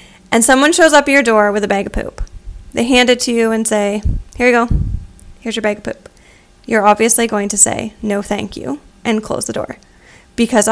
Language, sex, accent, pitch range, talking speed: English, female, American, 205-235 Hz, 225 wpm